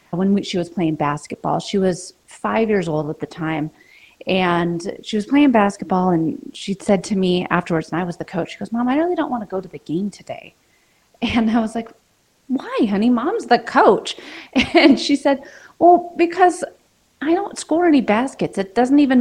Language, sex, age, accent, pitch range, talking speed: English, female, 30-49, American, 185-275 Hz, 200 wpm